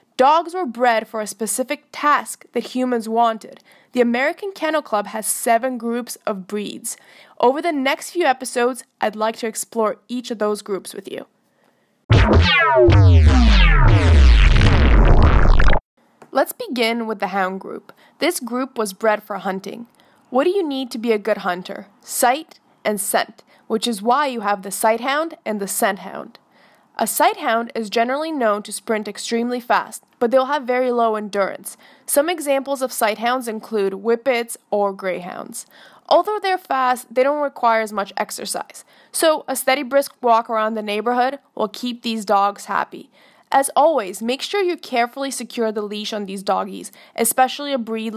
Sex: female